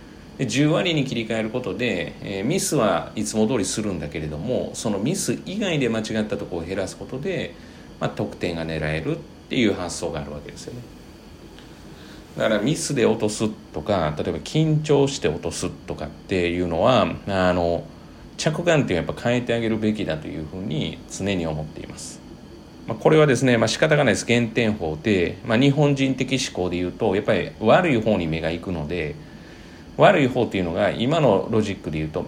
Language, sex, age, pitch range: Japanese, male, 40-59, 85-130 Hz